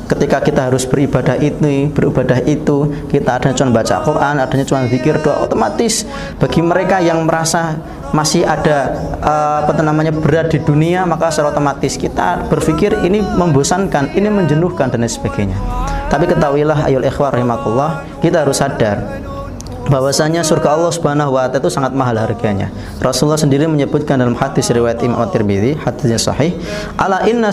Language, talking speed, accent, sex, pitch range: Indonesian, 150 wpm, native, male, 125-160 Hz